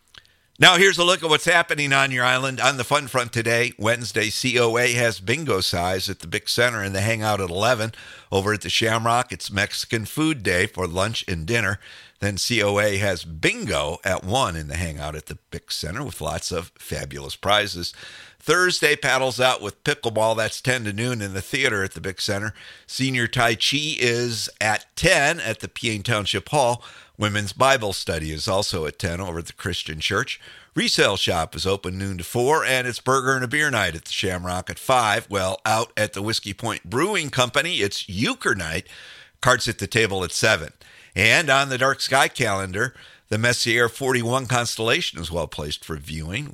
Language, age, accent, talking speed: English, 50-69, American, 190 wpm